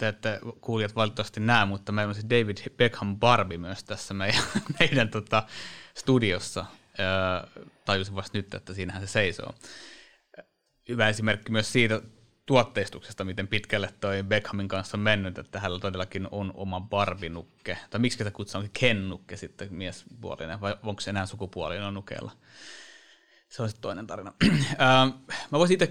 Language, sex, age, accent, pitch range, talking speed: Finnish, male, 30-49, native, 95-110 Hz, 145 wpm